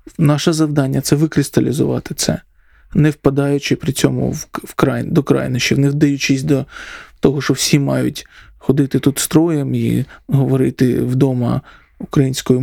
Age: 20-39